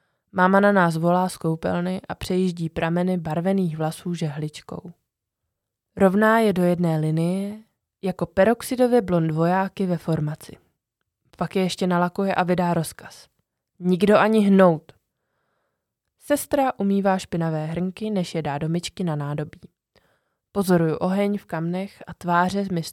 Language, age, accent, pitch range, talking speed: Czech, 20-39, native, 160-195 Hz, 130 wpm